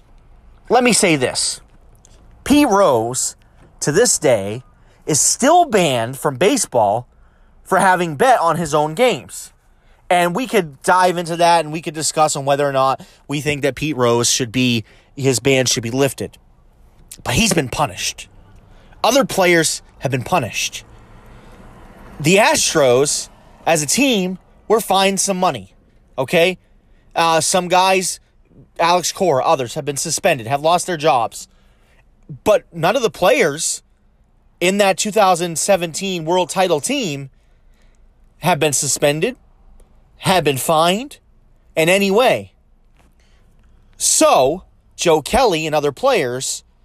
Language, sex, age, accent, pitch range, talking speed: English, male, 30-49, American, 125-190 Hz, 135 wpm